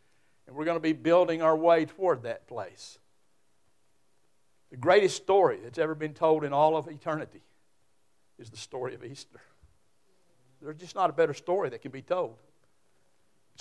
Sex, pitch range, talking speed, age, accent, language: male, 125-160 Hz, 170 wpm, 60-79, American, English